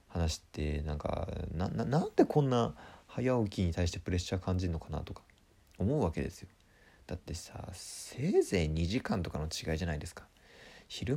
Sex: male